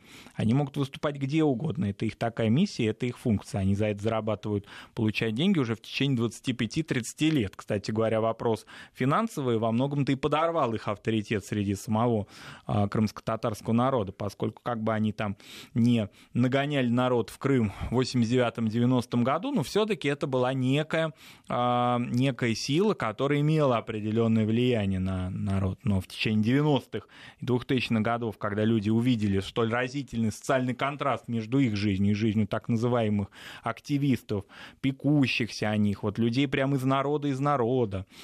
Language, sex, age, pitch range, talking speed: Russian, male, 20-39, 110-135 Hz, 150 wpm